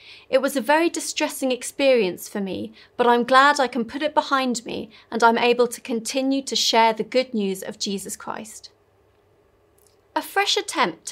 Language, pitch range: English, 220-275 Hz